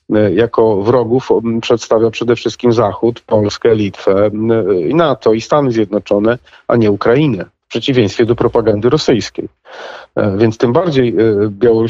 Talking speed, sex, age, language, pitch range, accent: 120 wpm, male, 40-59, Polish, 105-120 Hz, native